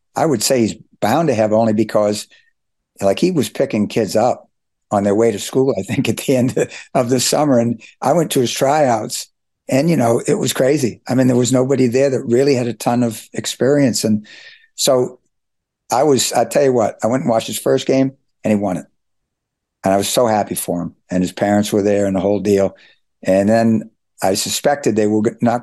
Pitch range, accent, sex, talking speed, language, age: 100-115 Hz, American, male, 220 wpm, English, 60-79